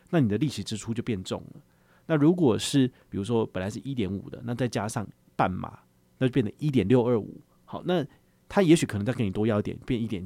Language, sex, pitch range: Chinese, male, 105-140 Hz